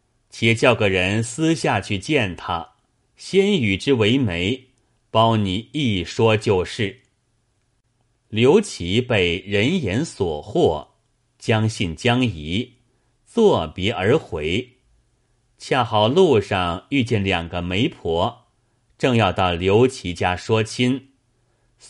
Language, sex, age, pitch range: Chinese, male, 30-49, 100-125 Hz